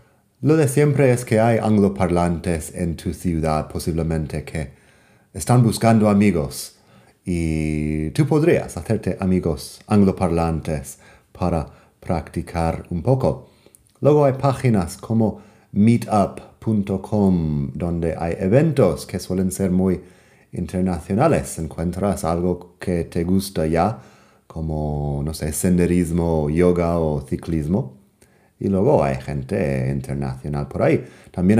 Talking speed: 110 wpm